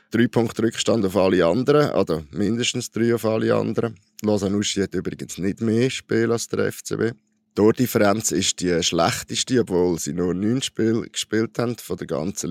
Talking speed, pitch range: 175 wpm, 105-125 Hz